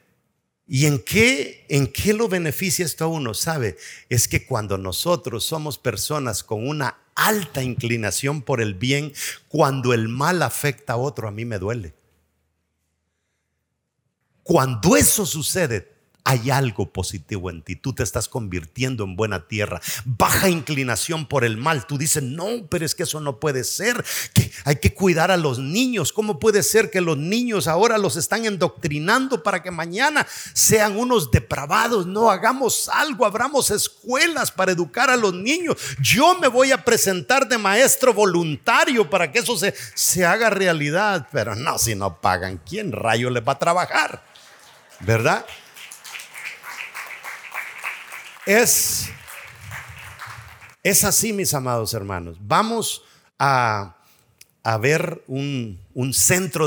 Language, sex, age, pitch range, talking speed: English, male, 50-69, 115-180 Hz, 145 wpm